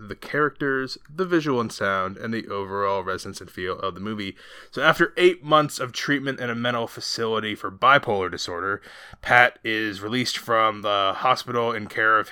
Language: English